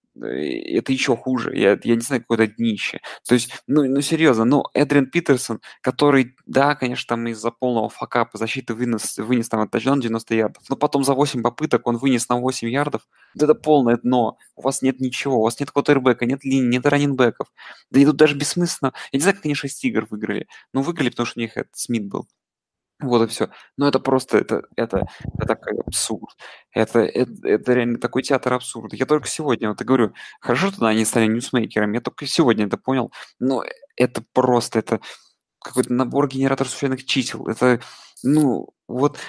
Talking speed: 195 wpm